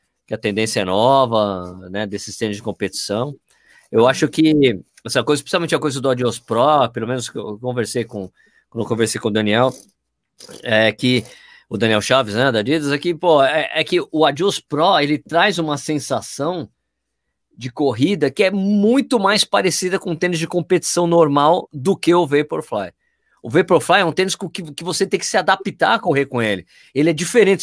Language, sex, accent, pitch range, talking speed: Portuguese, male, Brazilian, 135-185 Hz, 190 wpm